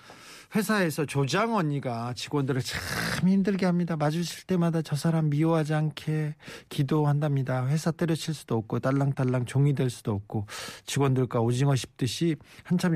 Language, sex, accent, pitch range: Korean, male, native, 130-175 Hz